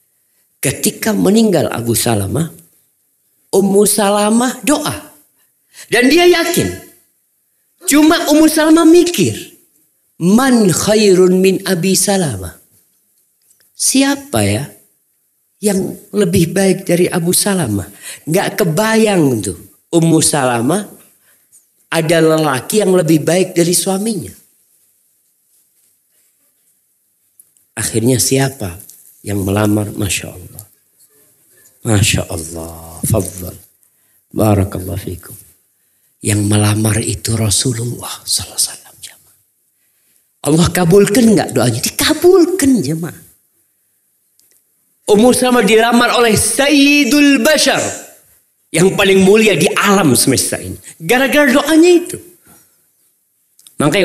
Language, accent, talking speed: Indonesian, native, 85 wpm